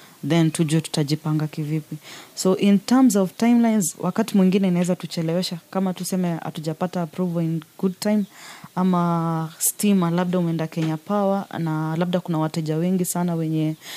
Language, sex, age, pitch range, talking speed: Swahili, female, 20-39, 160-190 Hz, 140 wpm